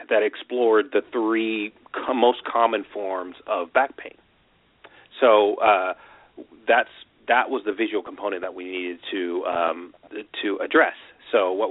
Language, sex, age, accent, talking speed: English, male, 30-49, American, 140 wpm